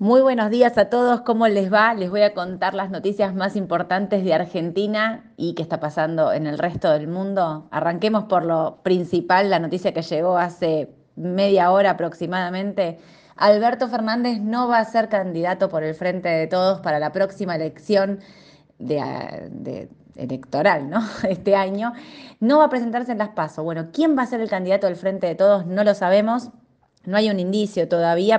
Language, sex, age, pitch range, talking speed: Spanish, female, 20-39, 170-210 Hz, 185 wpm